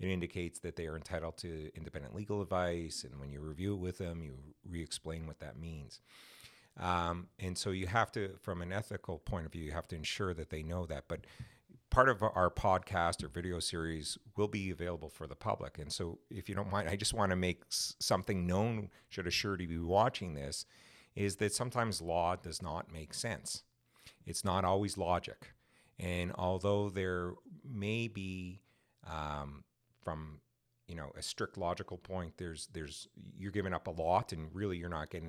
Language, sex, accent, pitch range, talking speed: English, male, American, 85-100 Hz, 195 wpm